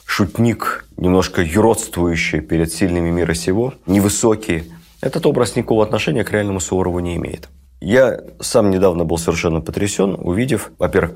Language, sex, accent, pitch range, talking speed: Russian, male, native, 85-105 Hz, 135 wpm